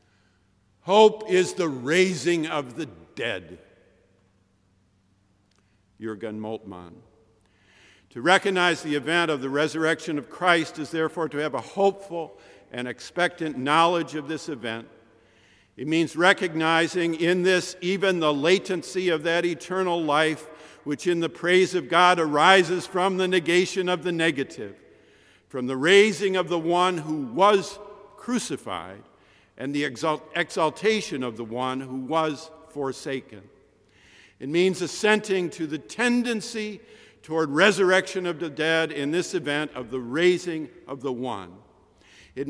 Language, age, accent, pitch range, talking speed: English, 50-69, American, 135-180 Hz, 135 wpm